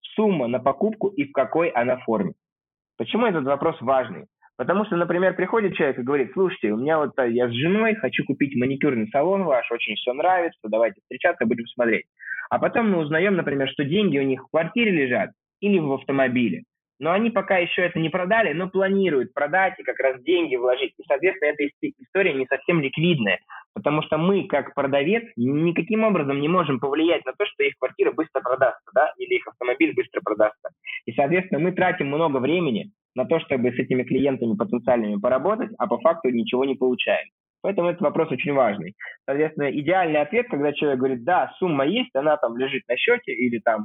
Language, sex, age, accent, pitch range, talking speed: Russian, male, 20-39, native, 130-195 Hz, 190 wpm